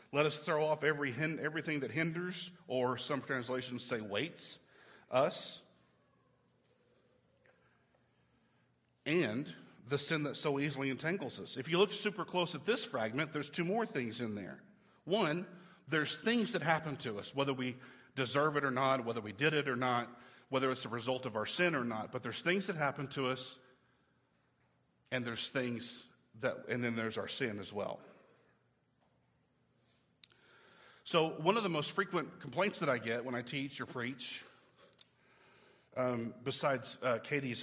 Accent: American